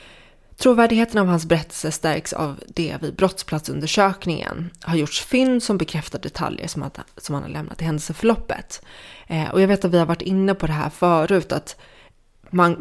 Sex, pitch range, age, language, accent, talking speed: female, 155-185 Hz, 20-39, Swedish, native, 185 wpm